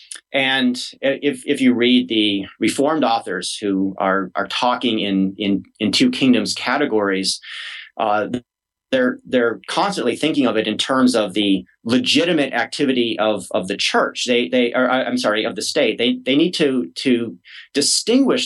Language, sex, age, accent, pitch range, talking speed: English, male, 30-49, American, 105-145 Hz, 165 wpm